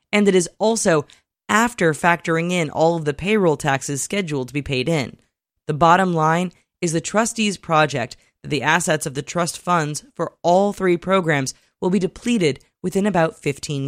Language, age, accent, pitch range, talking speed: English, 20-39, American, 155-210 Hz, 175 wpm